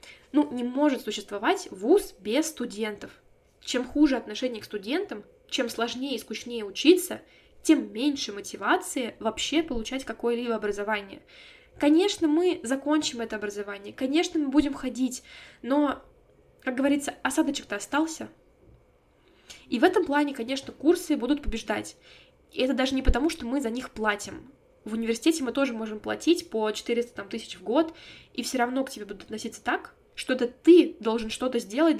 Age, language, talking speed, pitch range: 10-29, Russian, 150 wpm, 225-300 Hz